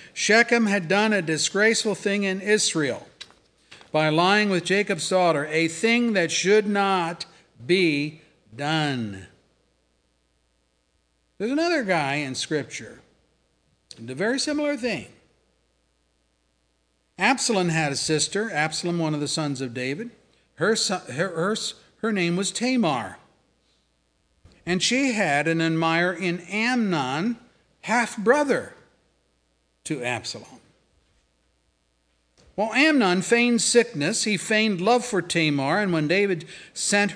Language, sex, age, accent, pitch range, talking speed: English, male, 50-69, American, 140-225 Hz, 110 wpm